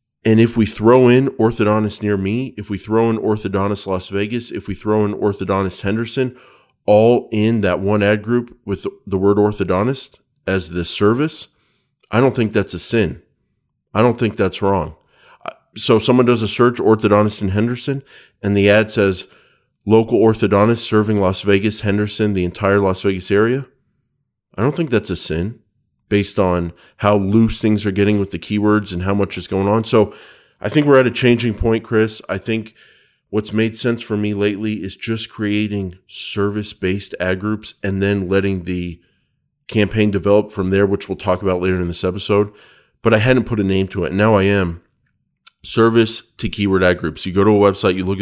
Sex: male